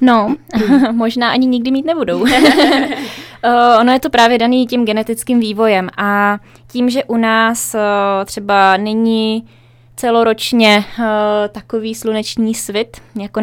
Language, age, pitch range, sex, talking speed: Czech, 20-39, 200-225 Hz, female, 115 wpm